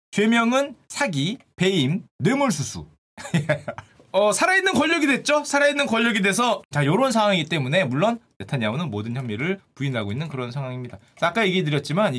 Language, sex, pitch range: Korean, male, 155-235 Hz